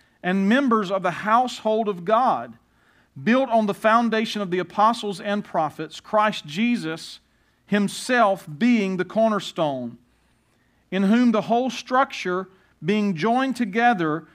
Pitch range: 190-235 Hz